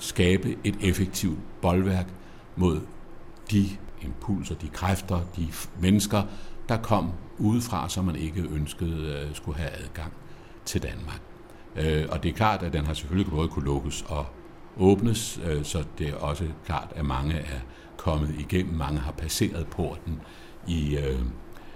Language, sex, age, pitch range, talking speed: Danish, male, 60-79, 75-95 Hz, 150 wpm